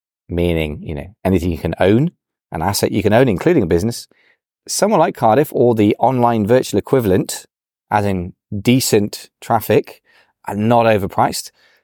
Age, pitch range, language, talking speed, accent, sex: 30-49, 90-110 Hz, English, 150 wpm, British, male